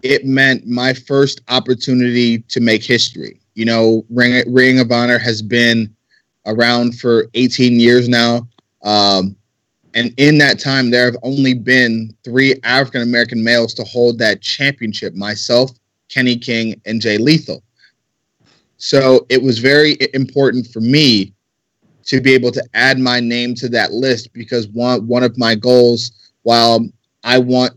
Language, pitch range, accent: English, 115-130 Hz, American